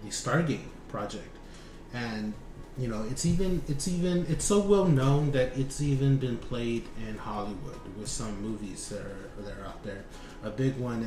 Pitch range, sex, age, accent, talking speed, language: 105-130 Hz, male, 30-49, American, 180 wpm, English